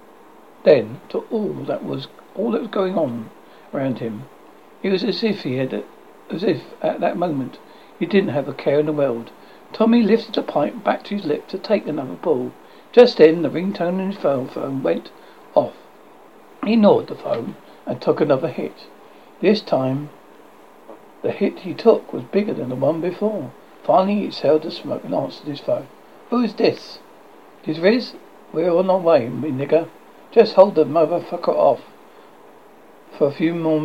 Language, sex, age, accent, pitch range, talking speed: English, male, 60-79, British, 145-200 Hz, 185 wpm